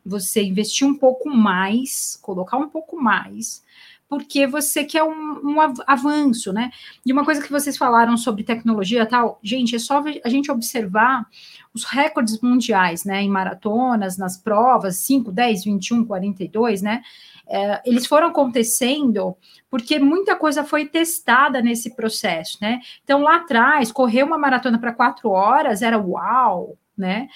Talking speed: 150 wpm